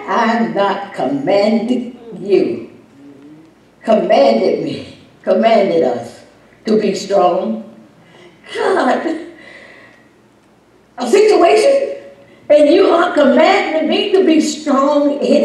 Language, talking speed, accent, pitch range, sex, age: English, 90 wpm, American, 245-325 Hz, female, 60-79